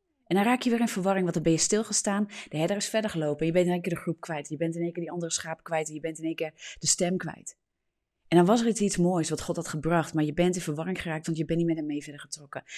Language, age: Dutch, 30-49